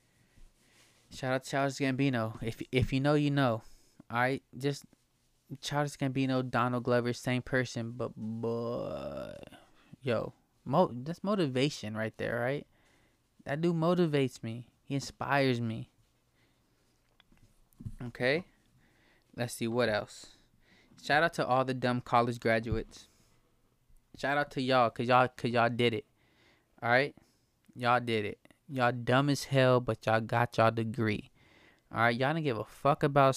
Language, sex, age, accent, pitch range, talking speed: English, male, 20-39, American, 115-145 Hz, 145 wpm